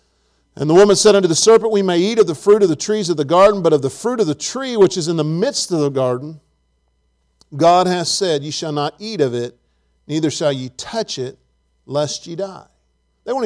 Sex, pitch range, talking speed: male, 135-185 Hz, 235 wpm